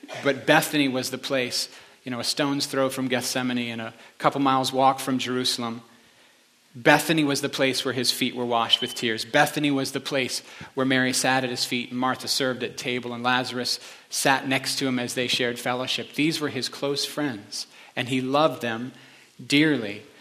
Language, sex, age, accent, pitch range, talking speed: English, male, 40-59, American, 125-150 Hz, 195 wpm